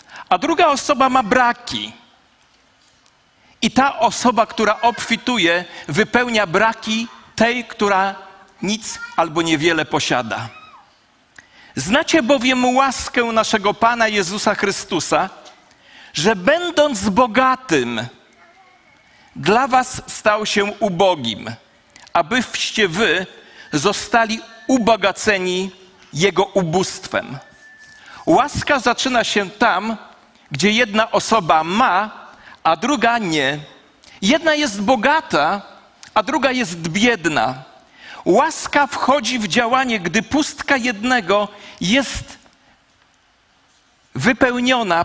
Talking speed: 90 wpm